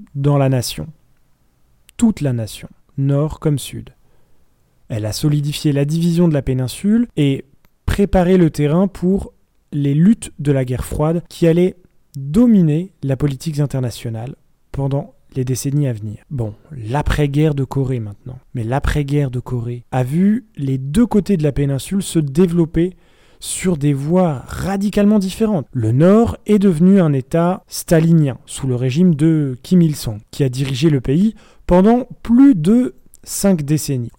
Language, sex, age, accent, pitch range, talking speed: French, male, 30-49, French, 135-195 Hz, 155 wpm